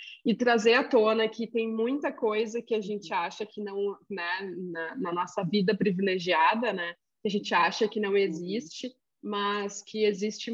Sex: female